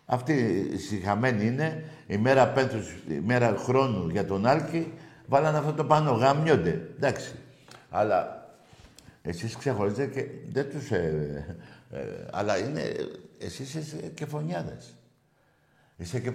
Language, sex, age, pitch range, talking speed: Greek, male, 60-79, 110-145 Hz, 120 wpm